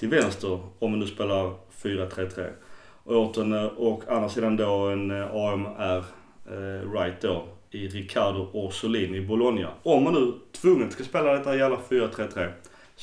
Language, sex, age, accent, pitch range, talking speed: Swedish, male, 30-49, native, 100-125 Hz, 145 wpm